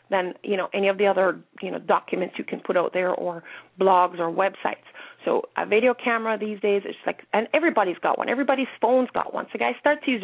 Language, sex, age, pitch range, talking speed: English, female, 30-49, 195-250 Hz, 235 wpm